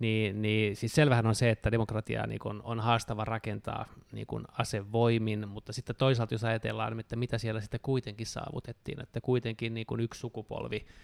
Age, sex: 20-39, male